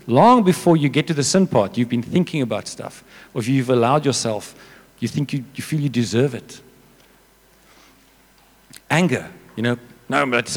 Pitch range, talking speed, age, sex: 115-150 Hz, 180 wpm, 50-69, male